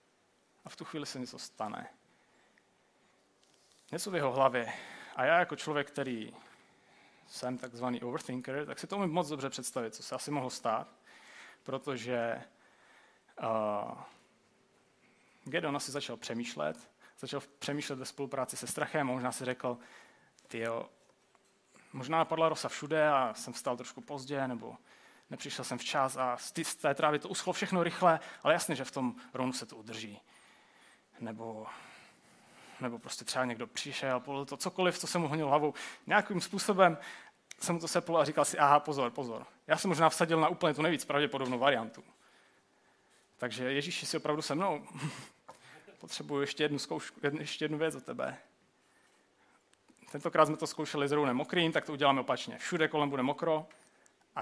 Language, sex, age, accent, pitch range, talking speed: Czech, male, 30-49, native, 125-155 Hz, 160 wpm